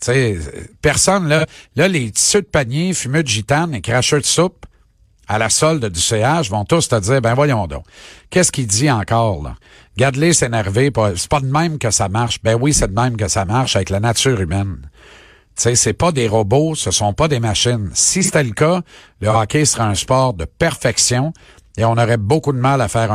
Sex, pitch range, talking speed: male, 110-150 Hz, 220 wpm